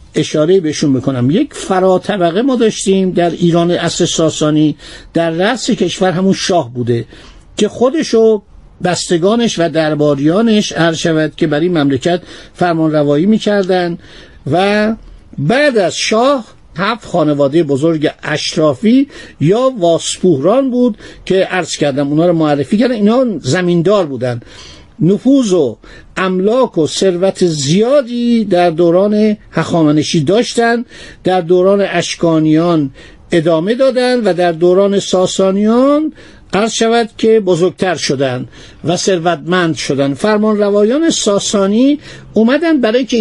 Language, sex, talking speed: Persian, male, 115 wpm